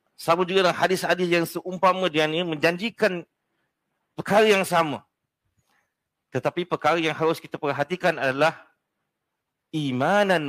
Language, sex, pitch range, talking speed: Malay, male, 130-175 Hz, 110 wpm